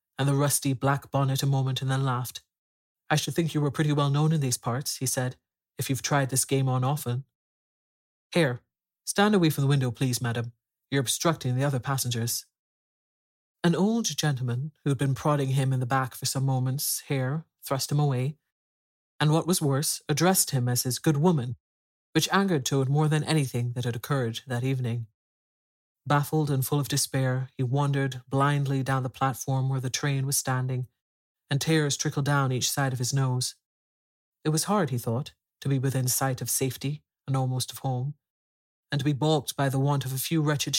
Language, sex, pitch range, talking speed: English, male, 125-150 Hz, 195 wpm